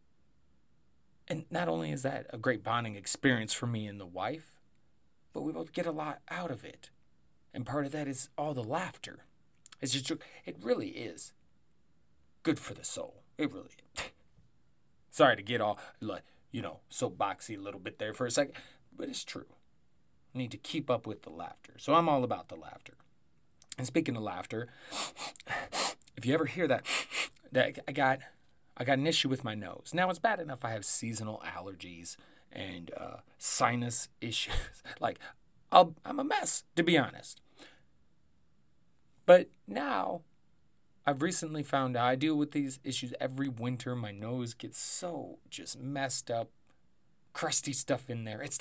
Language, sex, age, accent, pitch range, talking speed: English, male, 30-49, American, 105-140 Hz, 175 wpm